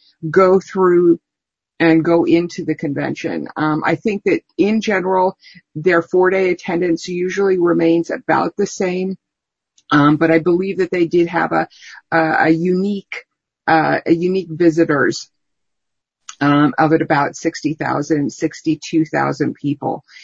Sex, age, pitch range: female, 50-69, 165-200 Hz